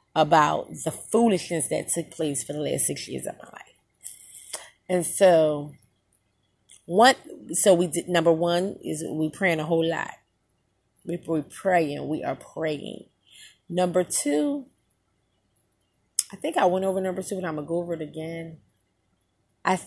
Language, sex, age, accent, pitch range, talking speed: English, female, 30-49, American, 155-255 Hz, 155 wpm